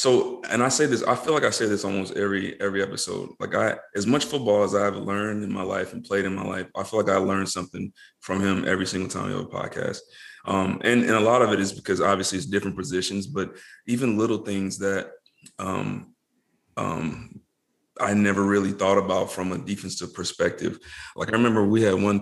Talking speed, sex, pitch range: 220 wpm, male, 95-105 Hz